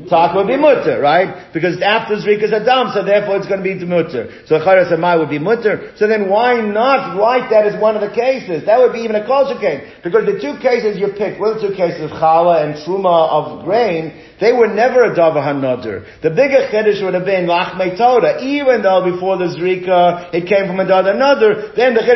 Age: 50-69